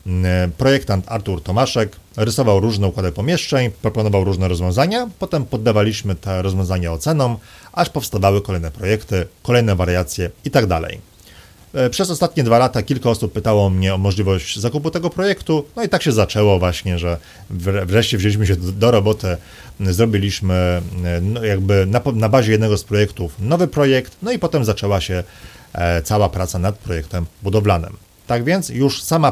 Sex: male